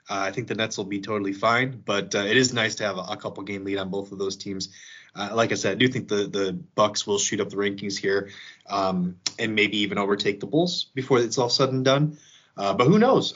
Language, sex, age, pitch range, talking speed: English, male, 20-39, 100-130 Hz, 260 wpm